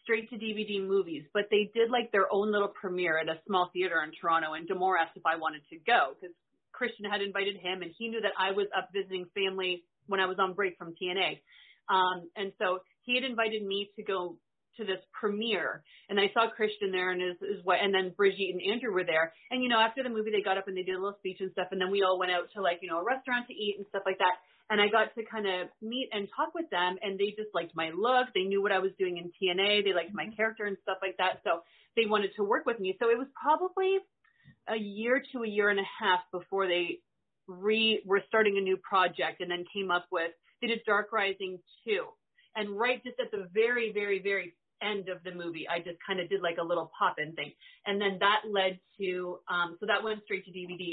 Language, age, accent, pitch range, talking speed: English, 30-49, American, 180-215 Hz, 250 wpm